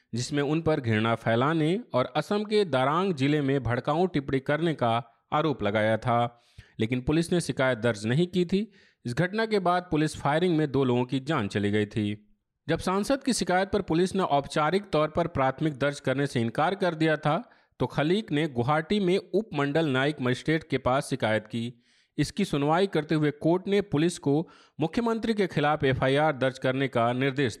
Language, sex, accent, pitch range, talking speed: Hindi, male, native, 125-170 Hz, 185 wpm